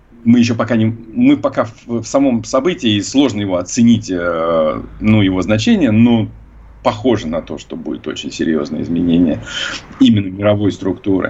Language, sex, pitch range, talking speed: Russian, male, 95-125 Hz, 155 wpm